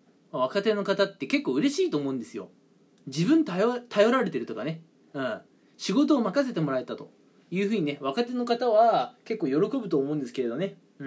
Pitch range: 165-270 Hz